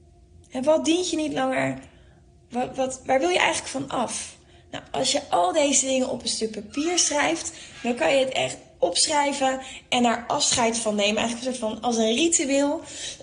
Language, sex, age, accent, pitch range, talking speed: Dutch, female, 20-39, Dutch, 210-260 Hz, 195 wpm